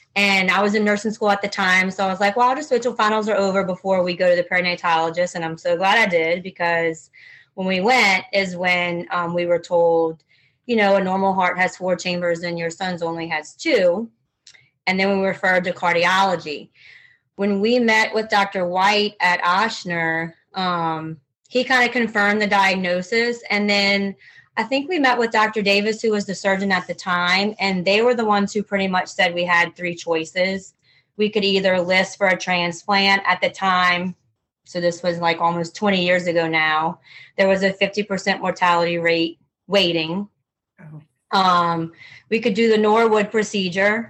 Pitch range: 175-200 Hz